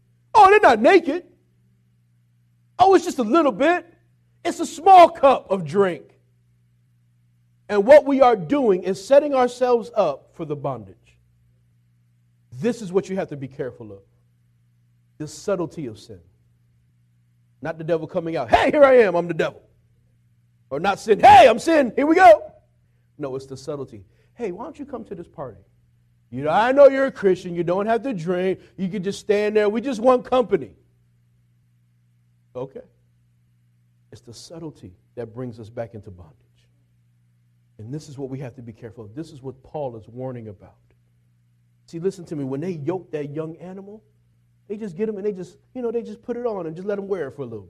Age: 40-59